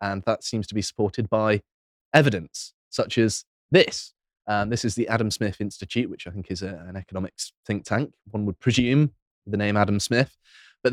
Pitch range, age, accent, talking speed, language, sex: 95-120 Hz, 20-39, British, 200 wpm, English, male